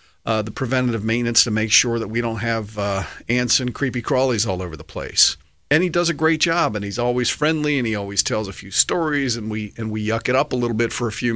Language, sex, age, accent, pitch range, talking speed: English, male, 50-69, American, 110-150 Hz, 260 wpm